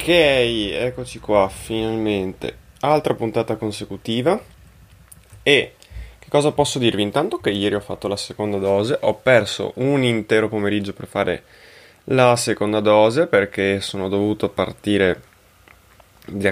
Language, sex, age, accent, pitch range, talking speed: Italian, male, 20-39, native, 95-115 Hz, 125 wpm